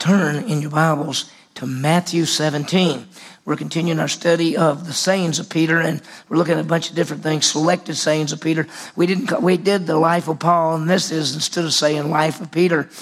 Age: 50-69